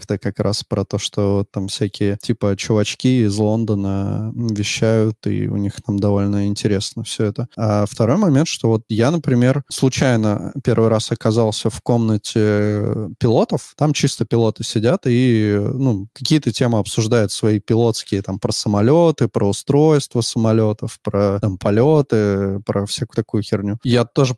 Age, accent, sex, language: 20-39, native, male, Russian